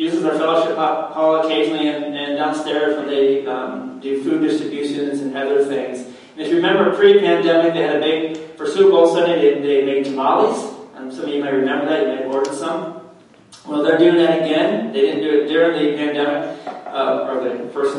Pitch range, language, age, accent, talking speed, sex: 135-165 Hz, English, 40-59, American, 205 wpm, male